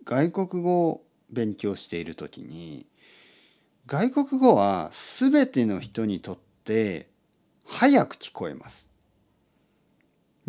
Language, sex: Japanese, male